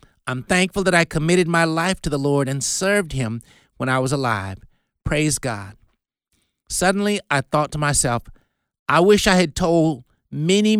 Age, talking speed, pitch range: 50-69, 165 wpm, 135-180 Hz